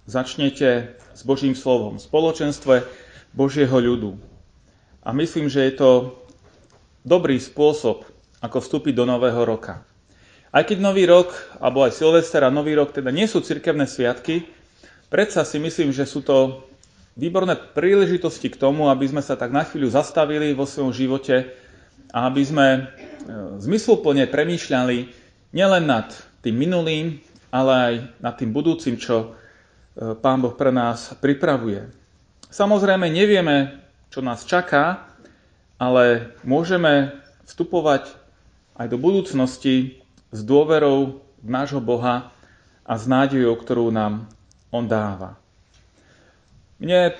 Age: 30-49